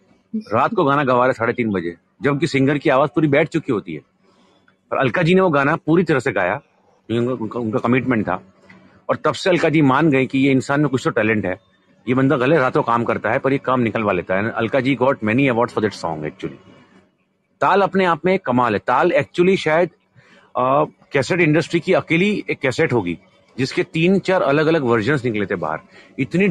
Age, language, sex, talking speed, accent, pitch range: 40-59, Hindi, male, 210 wpm, native, 120-160 Hz